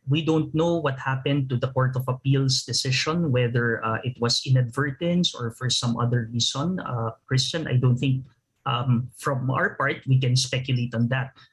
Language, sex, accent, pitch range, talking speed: English, male, Filipino, 125-170 Hz, 180 wpm